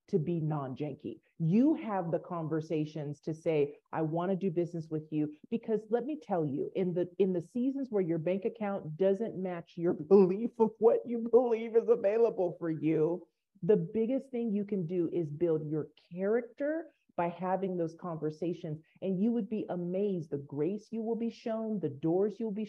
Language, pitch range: English, 160-205 Hz